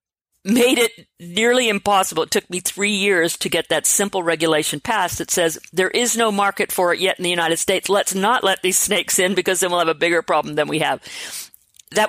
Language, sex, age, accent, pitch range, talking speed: English, female, 50-69, American, 170-205 Hz, 225 wpm